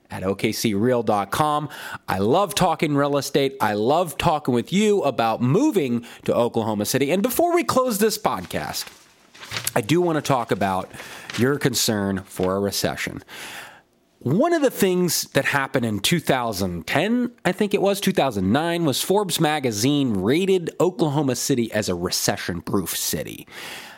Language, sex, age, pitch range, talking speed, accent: English, male, 30-49, 110-175 Hz, 145 wpm, American